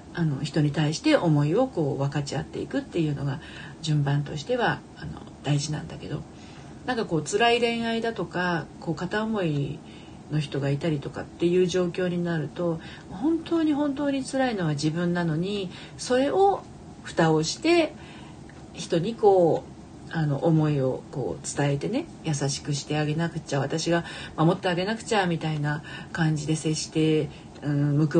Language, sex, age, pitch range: Japanese, female, 40-59, 150-190 Hz